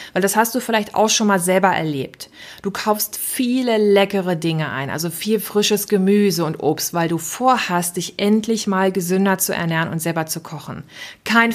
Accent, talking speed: German, 185 wpm